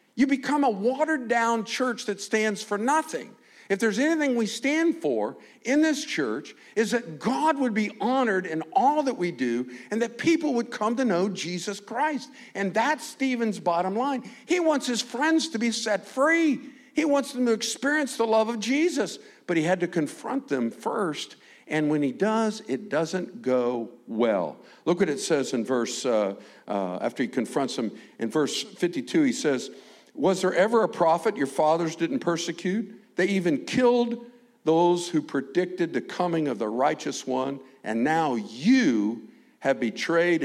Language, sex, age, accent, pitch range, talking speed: English, male, 50-69, American, 155-250 Hz, 175 wpm